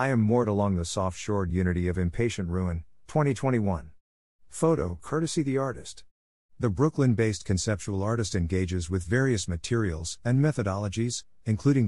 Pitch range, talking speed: 90-115 Hz, 130 wpm